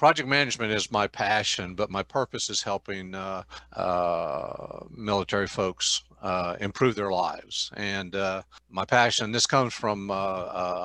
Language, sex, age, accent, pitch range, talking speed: English, male, 50-69, American, 100-120 Hz, 145 wpm